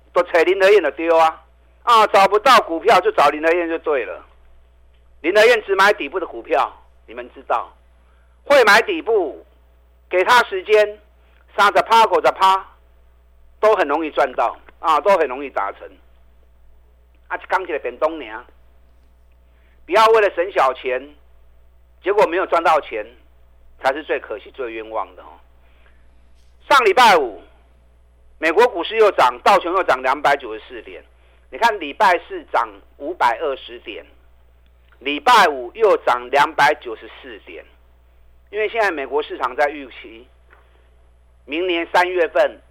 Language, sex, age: Chinese, male, 50-69